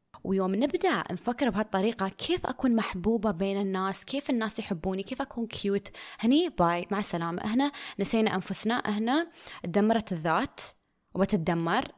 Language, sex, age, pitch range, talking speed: Arabic, female, 20-39, 185-240 Hz, 130 wpm